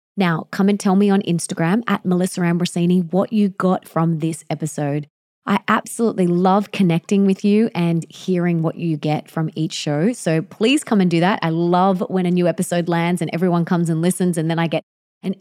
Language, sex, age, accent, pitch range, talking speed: English, female, 20-39, Australian, 165-205 Hz, 205 wpm